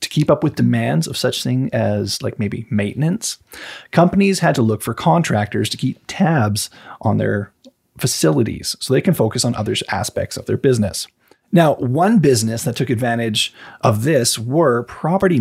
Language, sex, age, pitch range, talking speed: English, male, 30-49, 110-150 Hz, 170 wpm